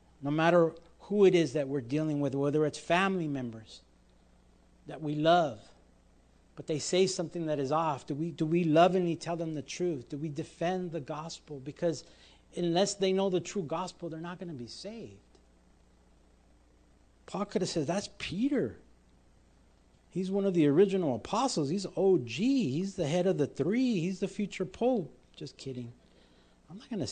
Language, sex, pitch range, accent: English, male, 110-175 Hz, American